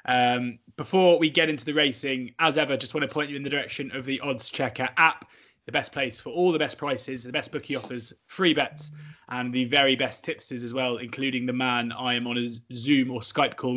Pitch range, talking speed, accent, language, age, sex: 125-150 Hz, 235 wpm, British, English, 20-39, male